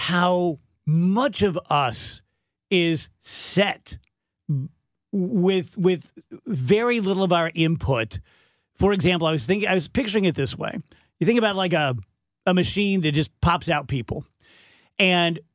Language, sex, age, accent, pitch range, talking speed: English, male, 40-59, American, 150-195 Hz, 145 wpm